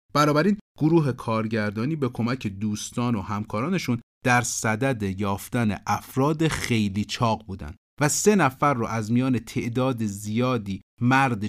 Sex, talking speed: male, 125 wpm